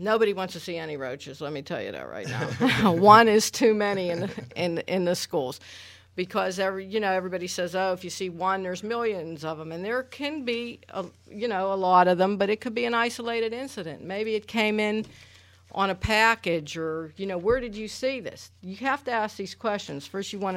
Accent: American